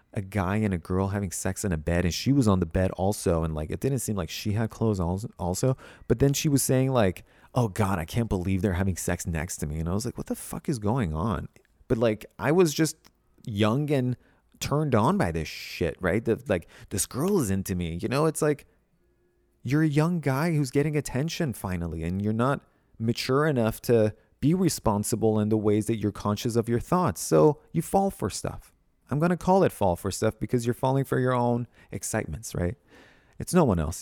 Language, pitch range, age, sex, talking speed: English, 95-130 Hz, 30-49, male, 225 wpm